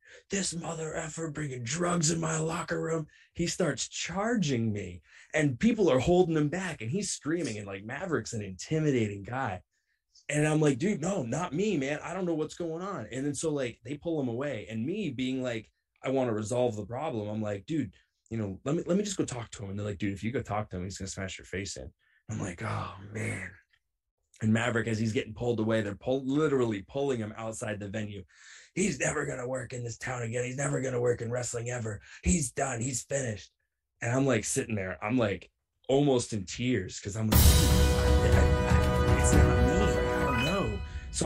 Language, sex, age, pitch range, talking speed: English, male, 20-39, 105-150 Hz, 220 wpm